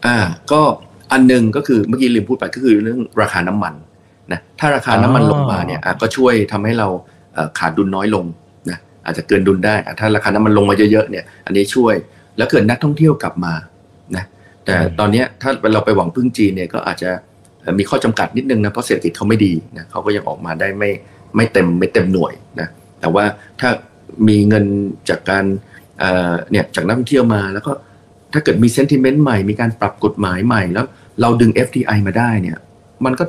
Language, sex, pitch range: Thai, male, 95-120 Hz